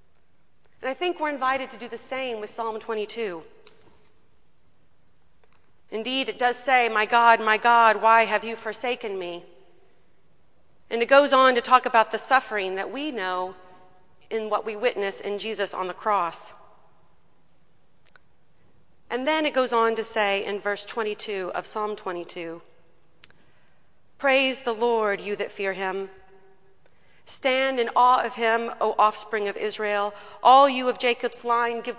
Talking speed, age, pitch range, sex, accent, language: 150 wpm, 40-59, 200-245 Hz, female, American, English